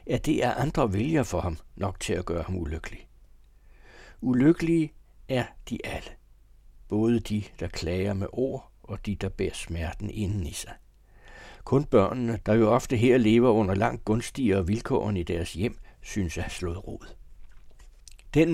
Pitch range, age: 100-125 Hz, 60-79